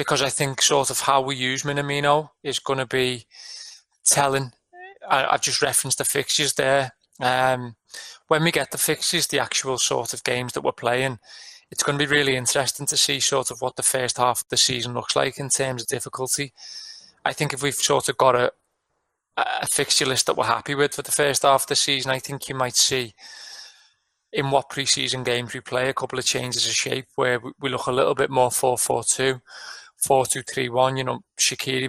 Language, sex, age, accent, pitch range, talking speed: English, male, 20-39, British, 125-140 Hz, 220 wpm